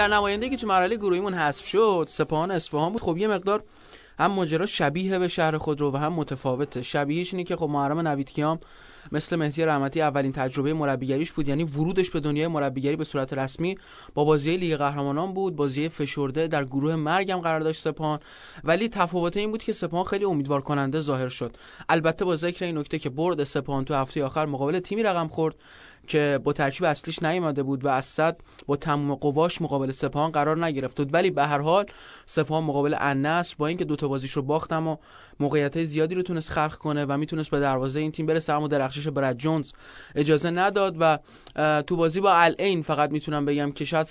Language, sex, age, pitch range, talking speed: Persian, male, 20-39, 145-175 Hz, 195 wpm